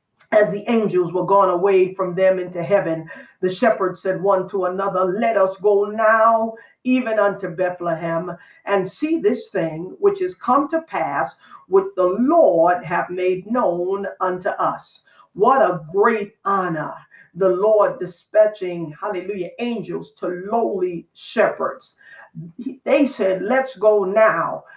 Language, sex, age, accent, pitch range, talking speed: English, female, 50-69, American, 185-265 Hz, 140 wpm